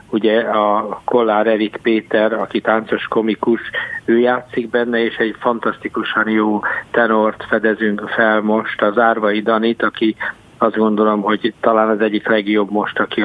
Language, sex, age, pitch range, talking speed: Hungarian, male, 50-69, 110-120 Hz, 145 wpm